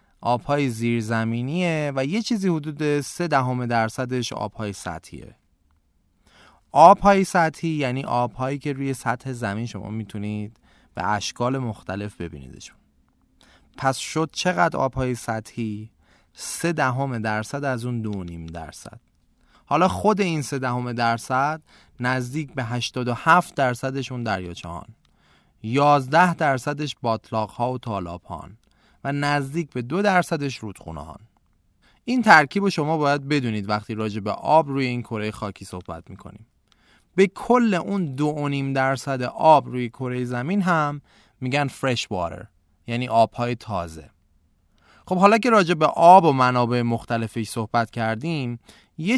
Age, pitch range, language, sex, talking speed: 30-49, 105-145 Hz, Persian, male, 125 wpm